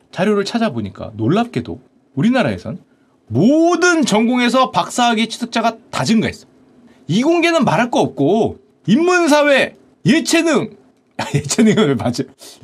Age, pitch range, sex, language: 40-59, 190-275 Hz, male, Korean